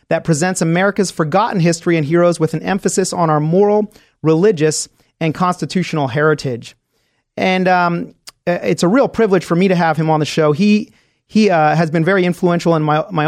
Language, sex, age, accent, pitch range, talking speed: English, male, 30-49, American, 155-185 Hz, 185 wpm